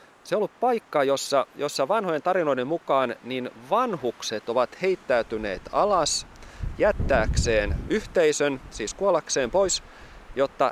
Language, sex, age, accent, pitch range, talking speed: Finnish, male, 30-49, native, 110-145 Hz, 110 wpm